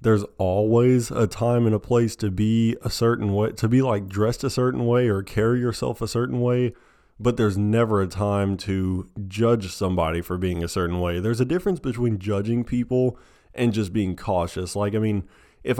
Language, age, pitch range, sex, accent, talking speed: English, 20-39, 95-115 Hz, male, American, 200 wpm